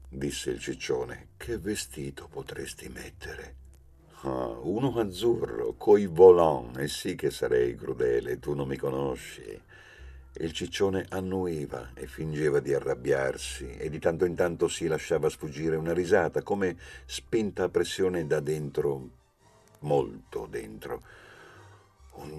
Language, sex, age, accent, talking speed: Italian, male, 50-69, native, 125 wpm